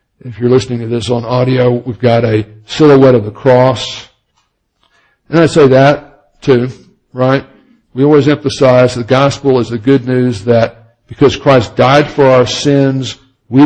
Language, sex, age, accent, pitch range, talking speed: English, male, 60-79, American, 115-140 Hz, 165 wpm